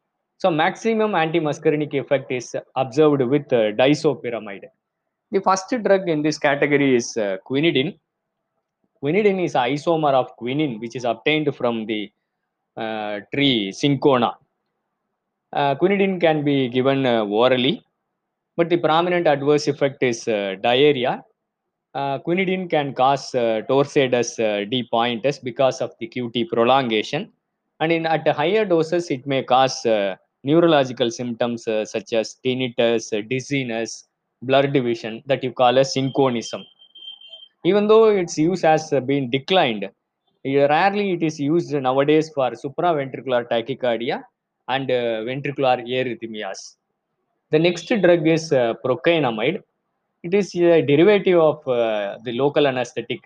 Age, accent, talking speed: 20-39, native, 135 wpm